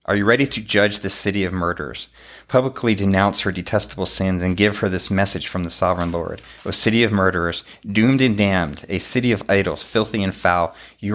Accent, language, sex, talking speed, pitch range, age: American, English, male, 205 wpm, 95-110 Hz, 30-49